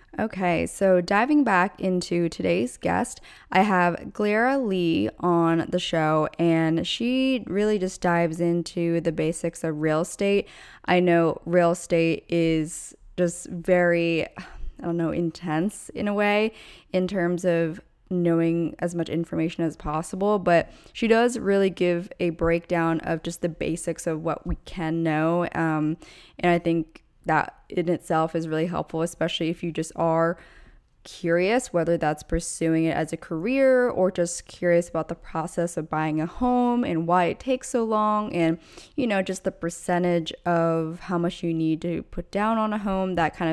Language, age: English, 20-39